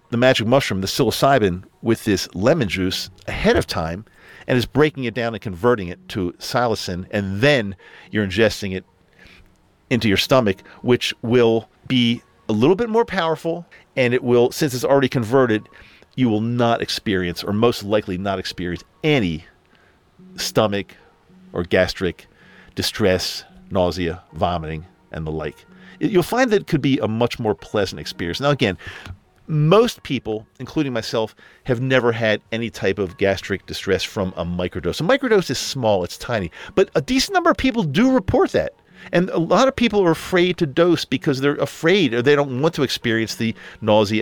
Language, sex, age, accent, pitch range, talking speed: English, male, 50-69, American, 95-140 Hz, 170 wpm